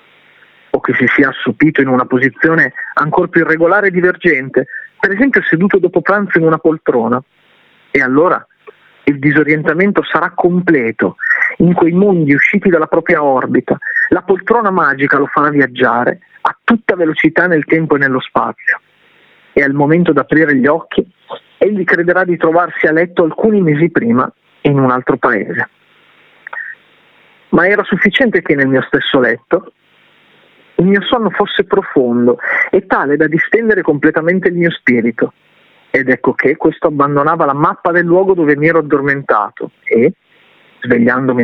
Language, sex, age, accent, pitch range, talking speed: Italian, male, 40-59, native, 145-195 Hz, 150 wpm